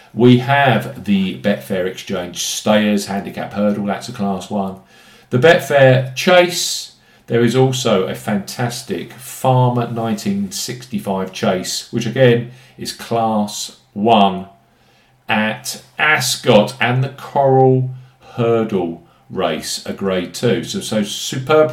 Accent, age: British, 50-69